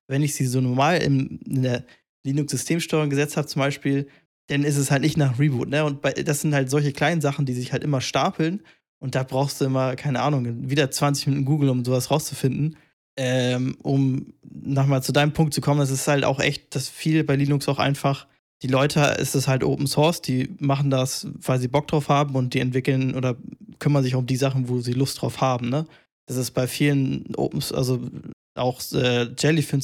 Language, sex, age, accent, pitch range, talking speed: German, male, 20-39, German, 130-145 Hz, 215 wpm